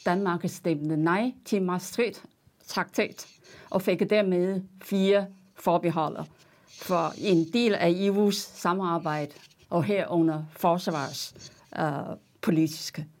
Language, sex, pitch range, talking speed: Danish, female, 165-215 Hz, 85 wpm